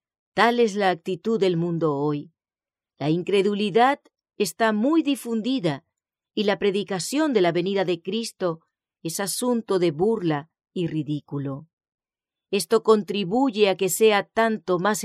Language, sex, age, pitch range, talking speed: English, female, 40-59, 165-230 Hz, 130 wpm